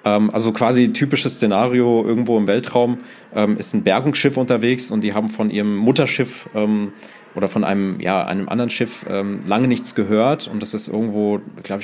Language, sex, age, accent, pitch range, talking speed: German, male, 30-49, German, 105-125 Hz, 180 wpm